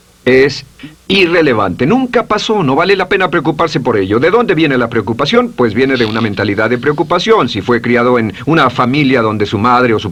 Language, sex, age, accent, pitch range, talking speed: Spanish, male, 50-69, Mexican, 110-155 Hz, 200 wpm